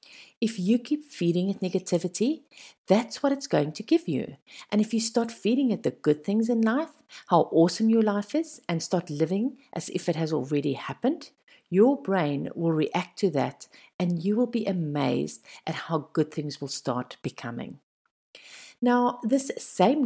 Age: 50-69